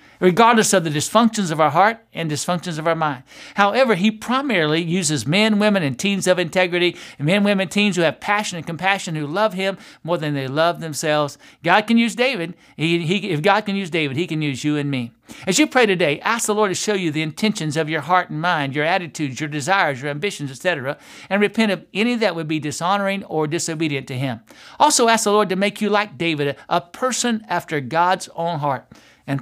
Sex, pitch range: male, 155-200 Hz